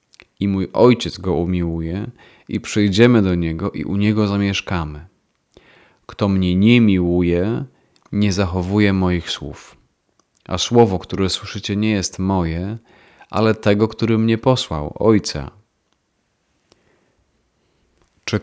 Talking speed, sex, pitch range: 115 wpm, male, 90-110 Hz